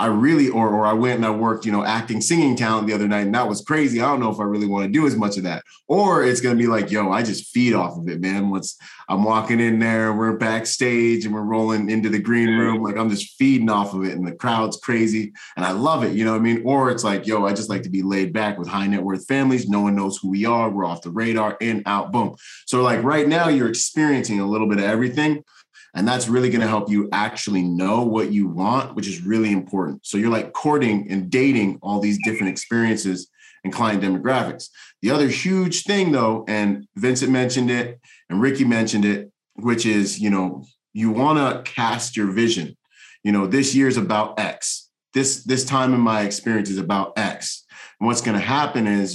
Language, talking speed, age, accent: English, 240 wpm, 30-49, American